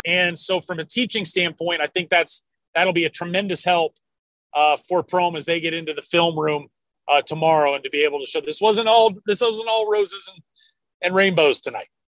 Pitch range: 155-210 Hz